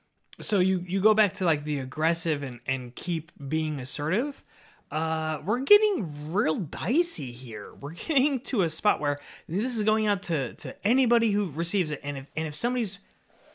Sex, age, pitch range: male, 20-39, 135-205 Hz